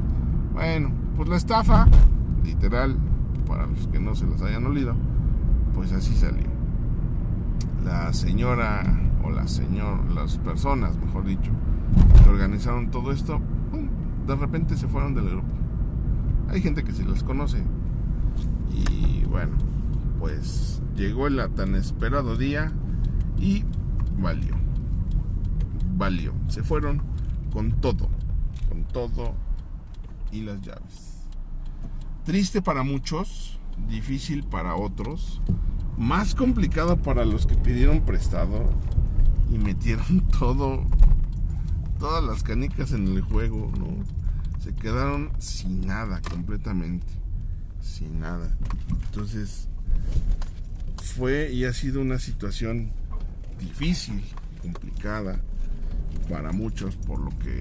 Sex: male